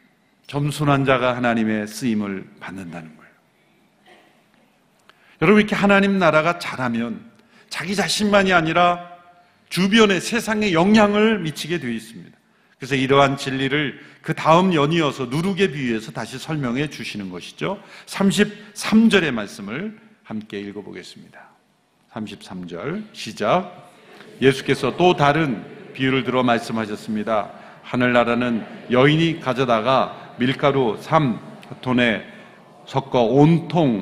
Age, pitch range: 40-59, 125-200 Hz